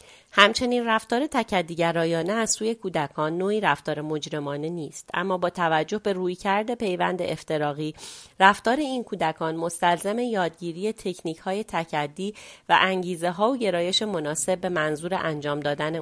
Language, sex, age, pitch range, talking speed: Persian, female, 30-49, 160-200 Hz, 130 wpm